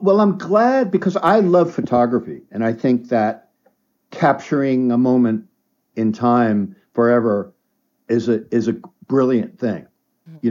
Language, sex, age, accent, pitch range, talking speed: English, male, 60-79, American, 110-140 Hz, 135 wpm